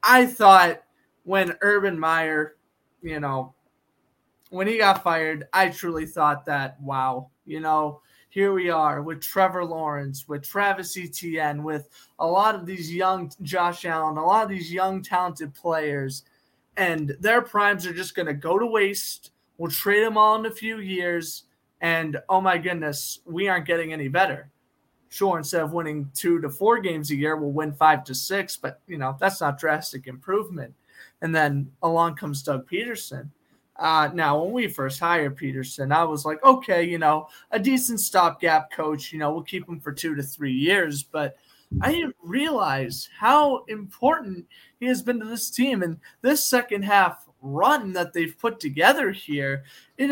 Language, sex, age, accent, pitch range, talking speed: English, male, 20-39, American, 150-195 Hz, 175 wpm